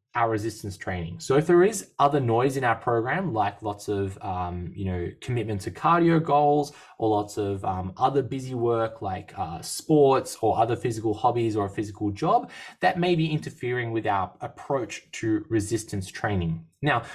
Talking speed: 180 wpm